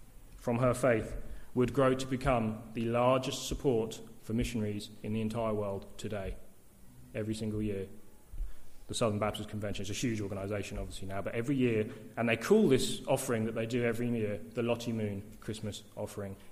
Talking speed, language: 175 wpm, English